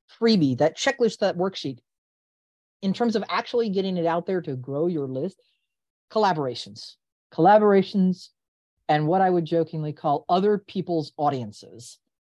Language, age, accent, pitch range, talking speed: English, 40-59, American, 130-190 Hz, 135 wpm